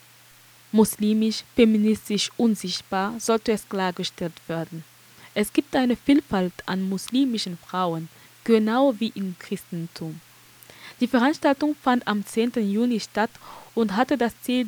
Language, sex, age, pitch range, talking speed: German, female, 10-29, 195-235 Hz, 120 wpm